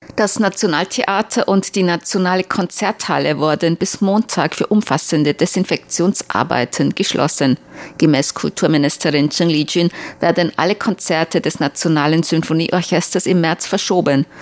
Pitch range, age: 150-185 Hz, 50-69